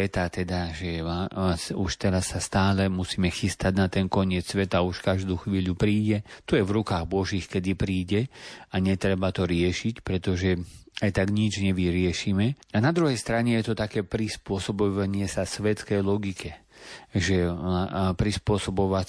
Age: 40-59